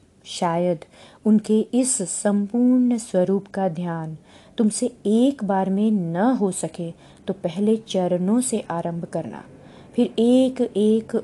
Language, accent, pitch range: Hindi, native, 175-235 Hz